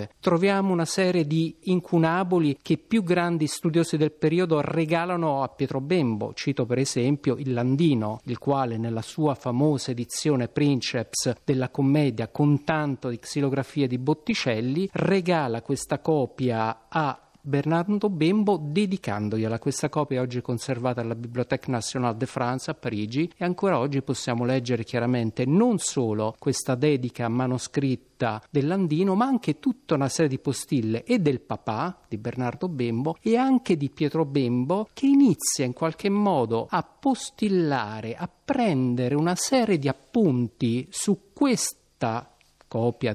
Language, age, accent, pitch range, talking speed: Italian, 50-69, native, 125-180 Hz, 140 wpm